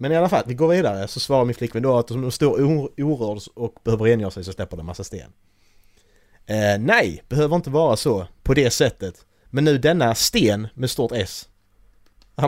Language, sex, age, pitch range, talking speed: Swedish, male, 30-49, 100-135 Hz, 210 wpm